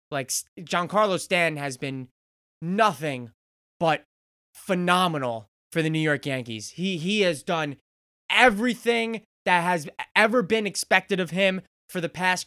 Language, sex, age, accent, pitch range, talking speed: English, male, 20-39, American, 155-215 Hz, 135 wpm